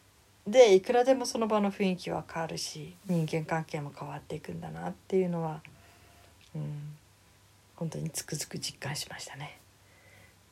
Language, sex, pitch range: Japanese, female, 145-195 Hz